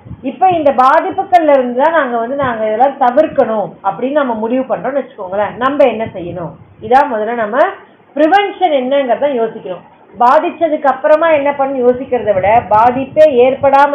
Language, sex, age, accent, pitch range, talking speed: Tamil, female, 30-49, native, 235-305 Hz, 95 wpm